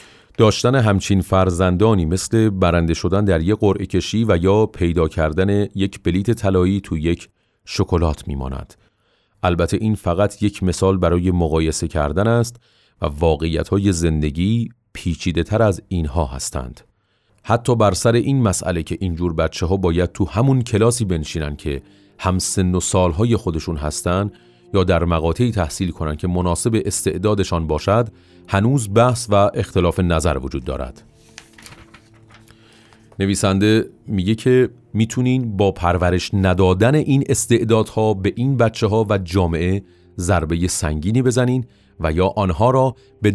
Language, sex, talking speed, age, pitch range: Persian, male, 135 wpm, 40-59, 90-110 Hz